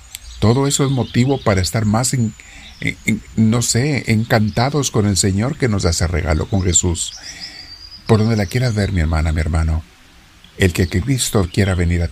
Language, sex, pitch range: Spanish, male, 85-105 Hz